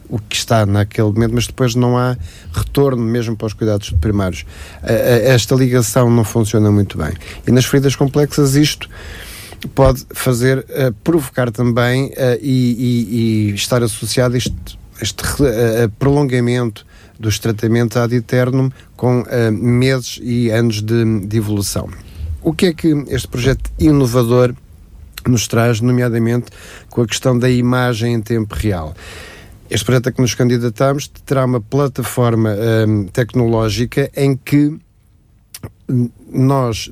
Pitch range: 105-125 Hz